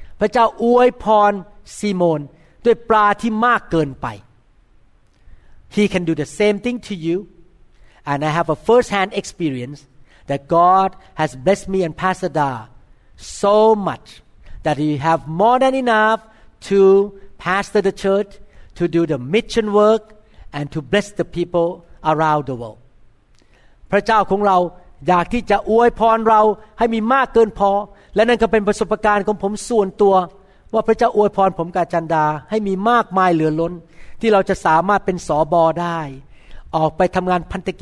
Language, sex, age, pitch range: Thai, male, 60-79, 160-210 Hz